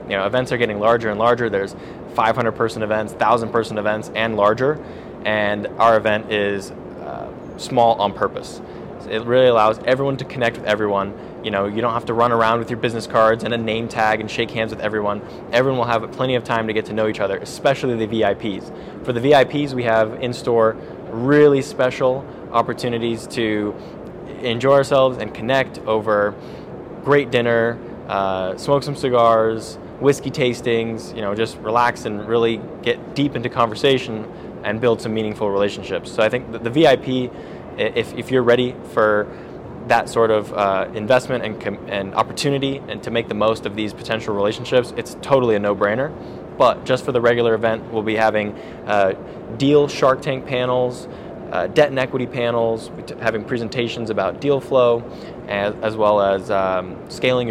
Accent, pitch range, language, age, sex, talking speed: American, 105-125 Hz, English, 20-39, male, 175 wpm